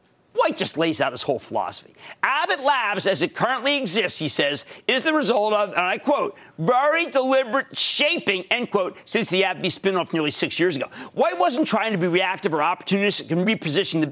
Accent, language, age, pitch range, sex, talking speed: American, English, 50-69, 165-250 Hz, male, 195 wpm